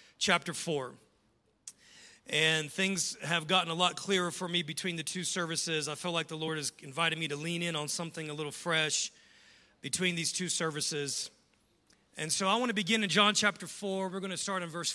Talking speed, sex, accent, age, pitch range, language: 205 wpm, male, American, 40-59, 155-185 Hz, English